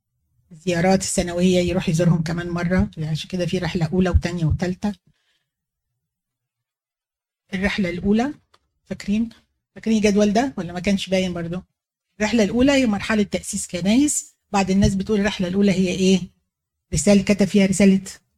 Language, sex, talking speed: Arabic, female, 135 wpm